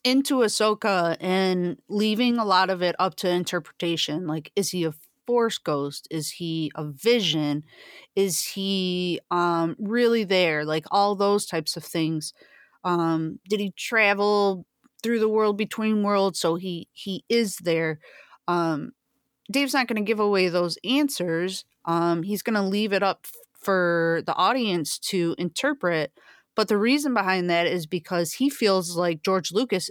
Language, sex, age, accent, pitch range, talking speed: English, female, 30-49, American, 170-215 Hz, 160 wpm